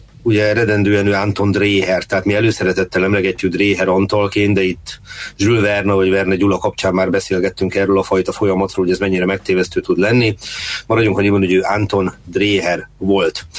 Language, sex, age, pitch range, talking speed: Hungarian, male, 30-49, 95-110 Hz, 170 wpm